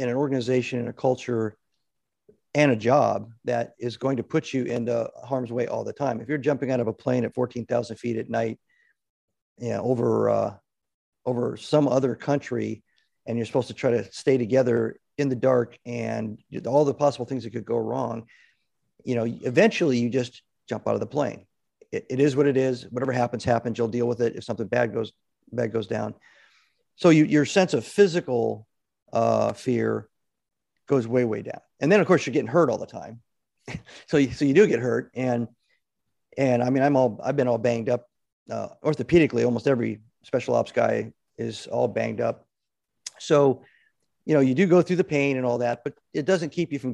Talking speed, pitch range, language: 205 wpm, 115-140 Hz, English